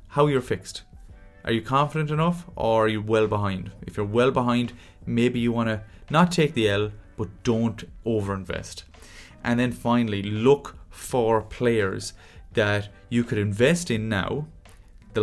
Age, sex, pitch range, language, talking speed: 30-49, male, 95-120 Hz, English, 160 wpm